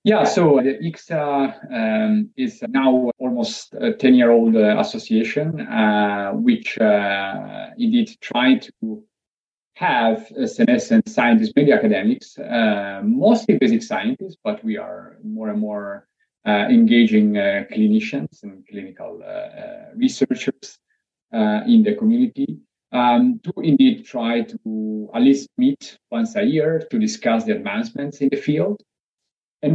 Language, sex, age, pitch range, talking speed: English, male, 30-49, 140-235 Hz, 135 wpm